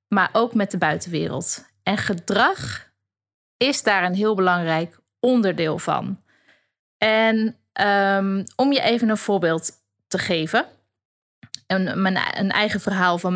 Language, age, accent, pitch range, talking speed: Dutch, 20-39, Dutch, 180-225 Hz, 120 wpm